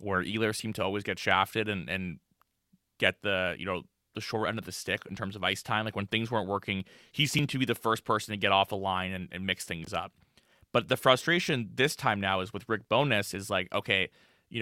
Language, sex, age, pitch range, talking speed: English, male, 20-39, 100-125 Hz, 245 wpm